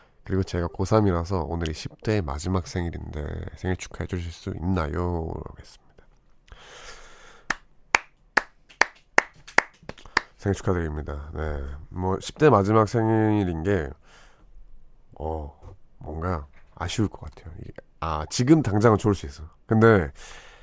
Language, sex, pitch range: Korean, male, 75-100 Hz